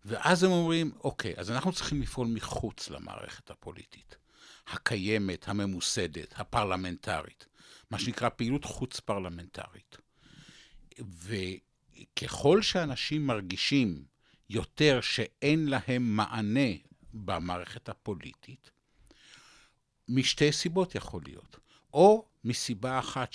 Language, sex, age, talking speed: Hebrew, male, 60-79, 85 wpm